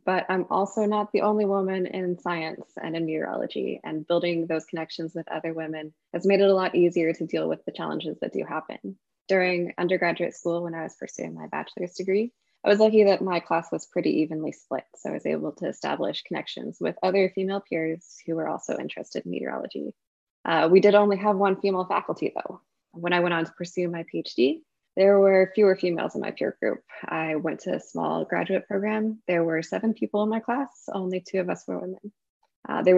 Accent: American